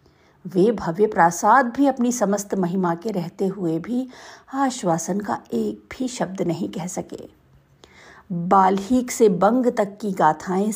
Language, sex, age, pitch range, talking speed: Hindi, female, 50-69, 185-240 Hz, 140 wpm